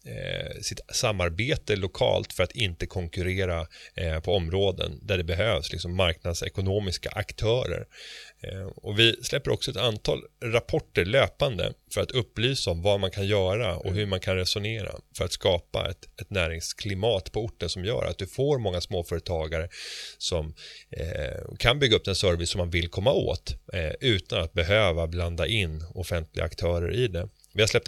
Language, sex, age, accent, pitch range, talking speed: Swedish, male, 30-49, native, 85-110 Hz, 155 wpm